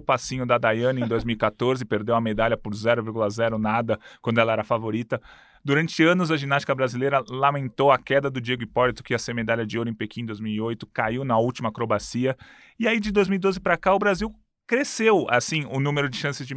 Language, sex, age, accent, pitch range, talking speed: Portuguese, male, 20-39, Brazilian, 120-180 Hz, 205 wpm